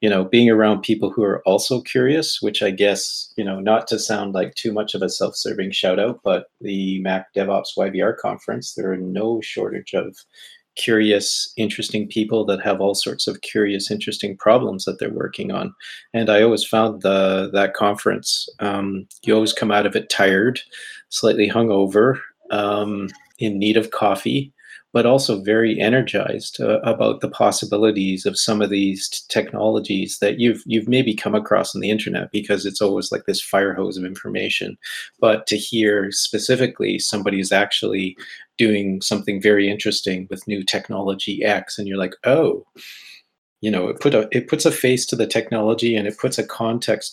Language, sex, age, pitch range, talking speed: English, male, 40-59, 100-110 Hz, 180 wpm